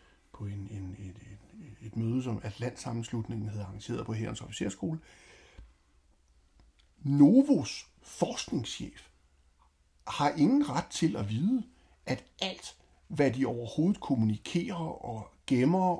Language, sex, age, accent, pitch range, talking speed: Danish, male, 60-79, native, 100-140 Hz, 115 wpm